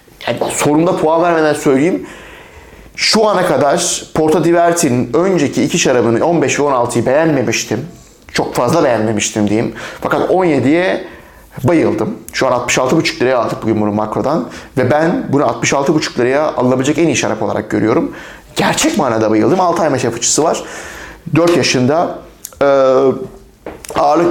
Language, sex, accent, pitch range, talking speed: Turkish, male, native, 120-165 Hz, 135 wpm